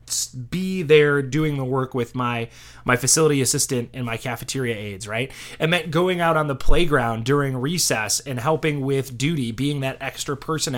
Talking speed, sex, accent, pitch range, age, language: 180 wpm, male, American, 125-160 Hz, 20-39, English